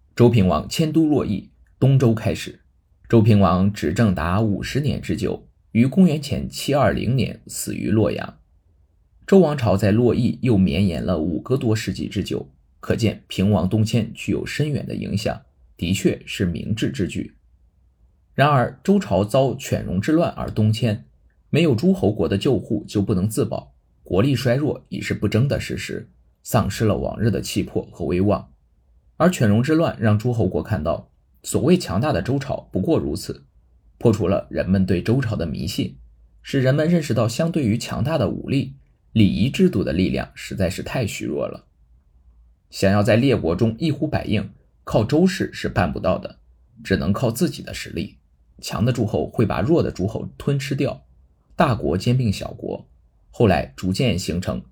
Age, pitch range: 20-39, 85-130 Hz